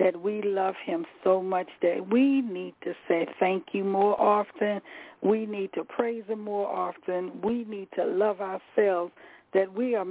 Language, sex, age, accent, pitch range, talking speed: English, female, 60-79, American, 180-225 Hz, 180 wpm